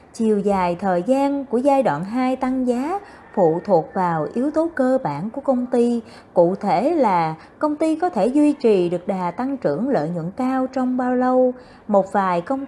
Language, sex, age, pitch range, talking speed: Vietnamese, female, 20-39, 180-270 Hz, 200 wpm